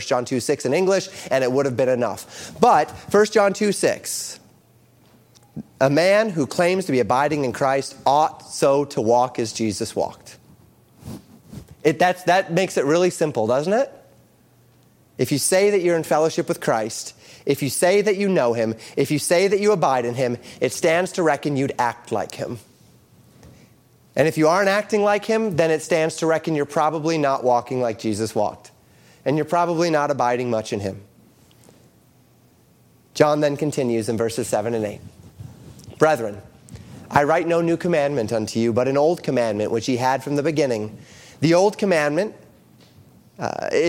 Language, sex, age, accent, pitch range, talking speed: English, male, 30-49, American, 120-170 Hz, 180 wpm